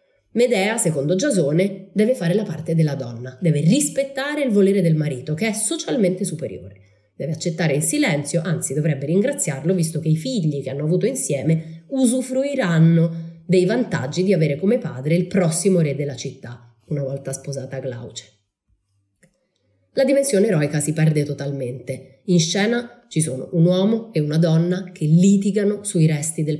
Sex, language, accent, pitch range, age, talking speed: female, Italian, native, 140-190 Hz, 30-49, 160 wpm